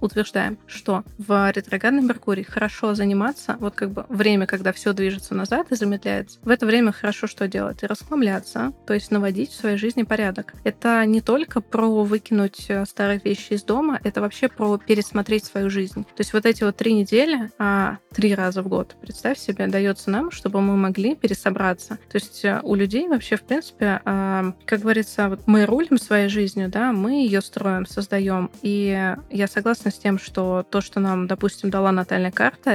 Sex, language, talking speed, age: female, Russian, 180 wpm, 20-39